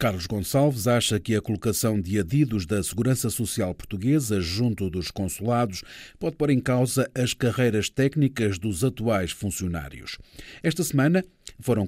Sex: male